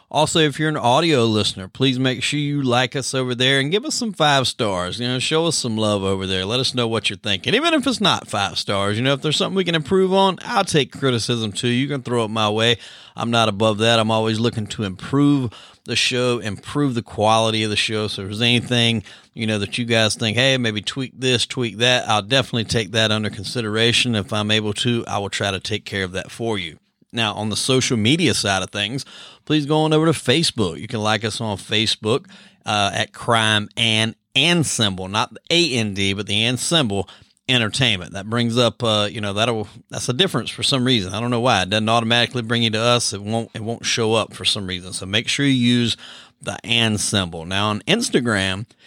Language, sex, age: English, male, 30-49